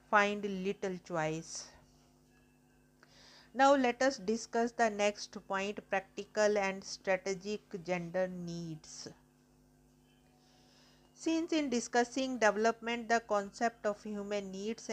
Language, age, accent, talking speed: English, 50-69, Indian, 95 wpm